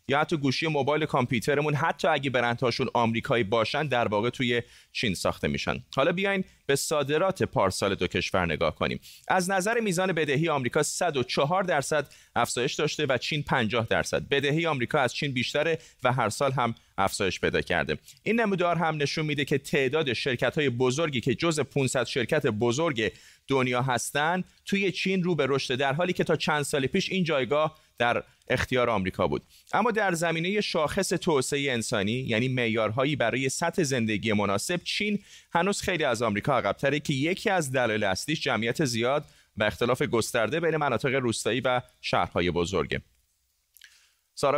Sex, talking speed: male, 160 wpm